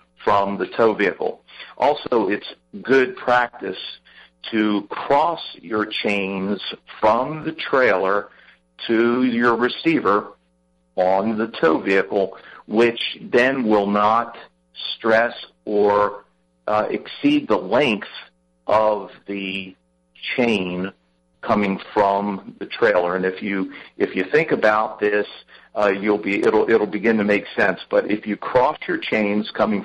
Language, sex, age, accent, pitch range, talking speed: English, male, 60-79, American, 95-110 Hz, 125 wpm